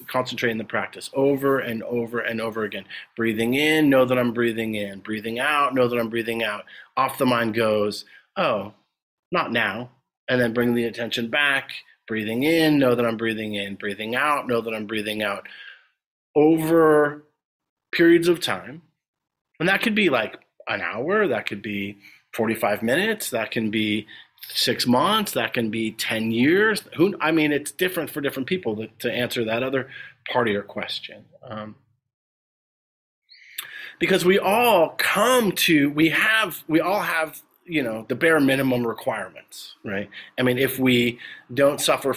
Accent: American